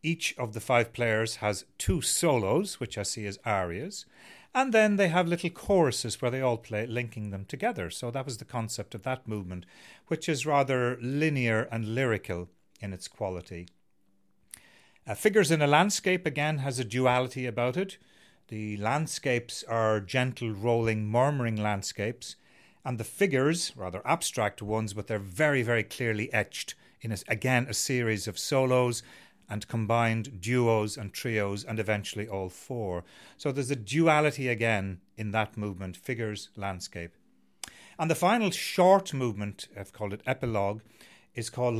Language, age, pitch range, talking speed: English, 40-59, 105-130 Hz, 155 wpm